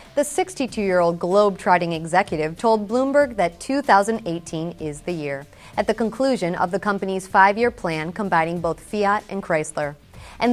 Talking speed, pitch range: 145 wpm, 170-225 Hz